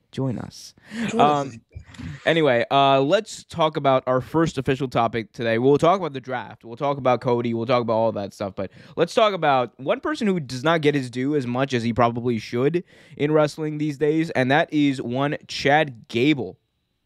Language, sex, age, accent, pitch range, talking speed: English, male, 20-39, American, 125-150 Hz, 195 wpm